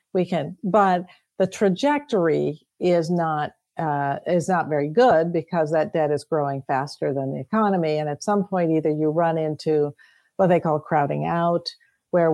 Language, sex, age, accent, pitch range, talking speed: English, female, 50-69, American, 155-195 Hz, 170 wpm